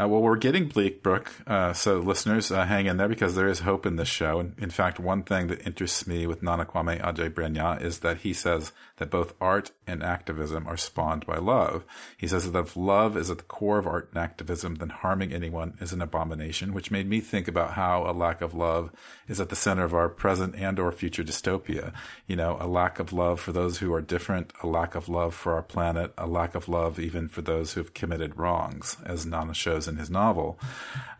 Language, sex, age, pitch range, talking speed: English, male, 40-59, 85-100 Hz, 235 wpm